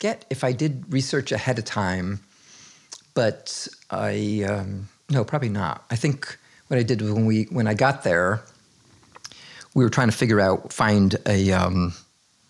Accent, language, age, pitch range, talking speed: American, English, 50-69, 105-130 Hz, 170 wpm